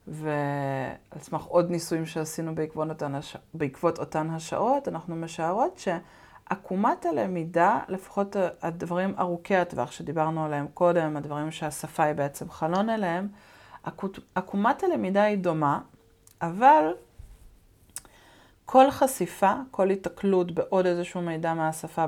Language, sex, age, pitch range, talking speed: Hebrew, female, 30-49, 160-200 Hz, 115 wpm